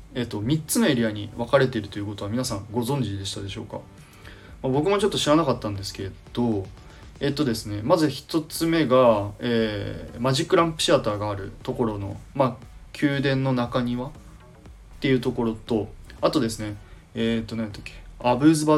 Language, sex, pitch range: Japanese, male, 100-135 Hz